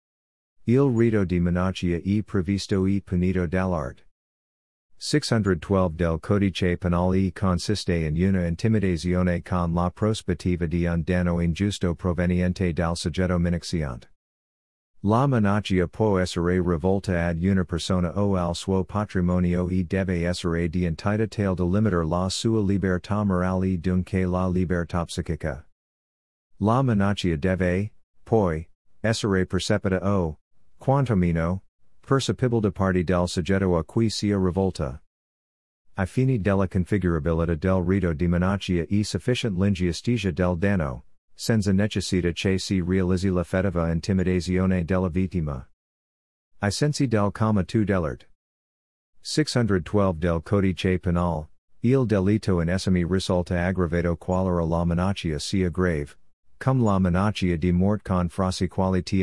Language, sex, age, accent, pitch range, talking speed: Italian, male, 50-69, American, 85-100 Hz, 130 wpm